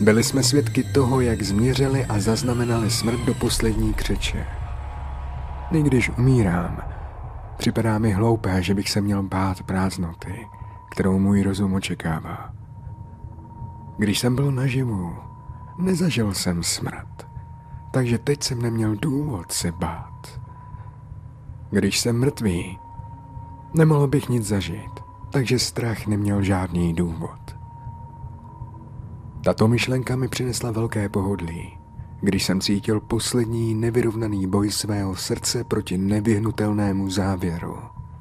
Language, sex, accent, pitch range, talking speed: Czech, male, native, 95-125 Hz, 110 wpm